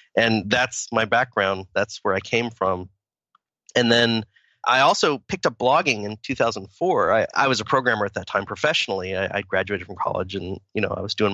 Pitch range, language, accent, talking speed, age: 105-130 Hz, English, American, 200 wpm, 30-49